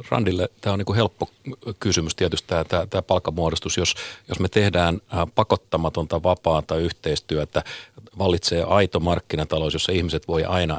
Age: 40-59